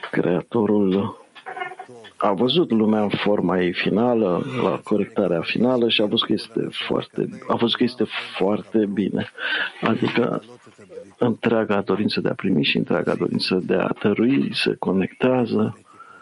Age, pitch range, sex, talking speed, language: 50-69, 95-125 Hz, male, 135 wpm, English